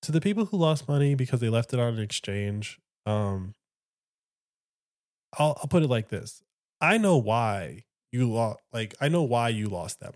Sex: male